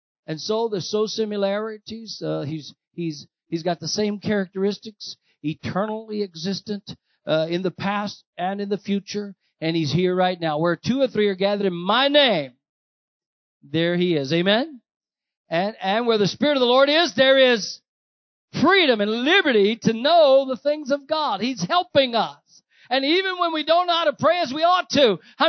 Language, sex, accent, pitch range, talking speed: English, male, American, 165-220 Hz, 185 wpm